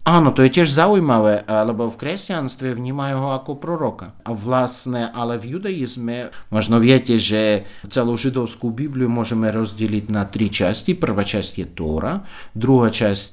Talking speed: 140 wpm